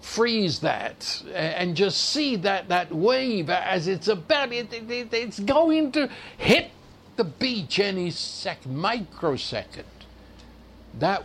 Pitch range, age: 155-230 Hz, 60-79